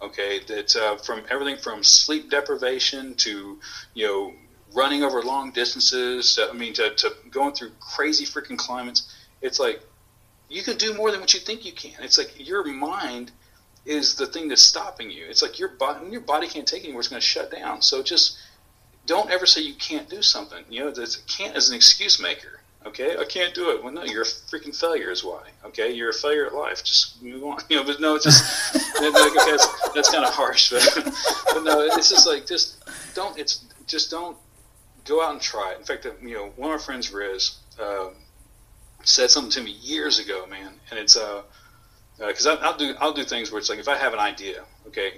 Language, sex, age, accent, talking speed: English, male, 40-59, American, 220 wpm